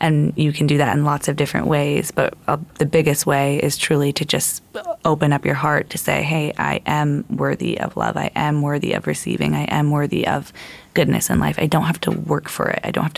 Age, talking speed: 20-39, 240 wpm